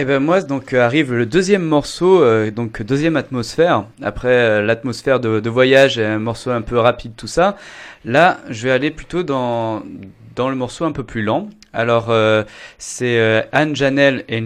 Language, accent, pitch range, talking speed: French, French, 110-135 Hz, 190 wpm